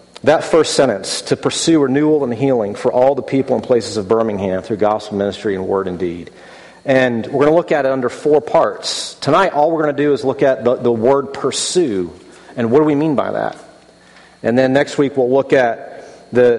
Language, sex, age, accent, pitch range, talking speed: English, male, 40-59, American, 110-135 Hz, 220 wpm